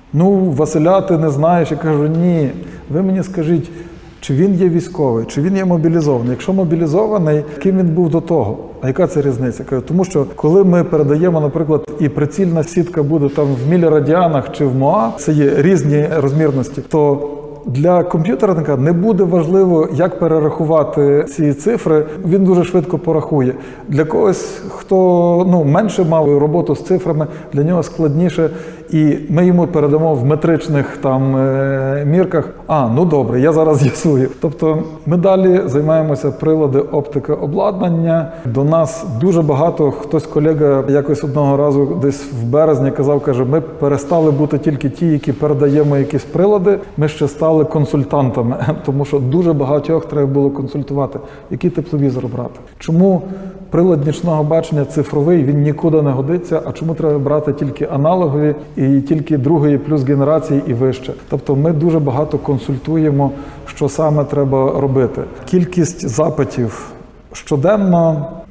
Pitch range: 145-170 Hz